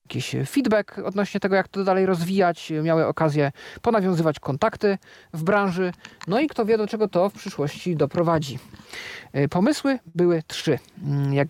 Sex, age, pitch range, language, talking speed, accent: male, 40-59, 155-195 Hz, Polish, 145 wpm, native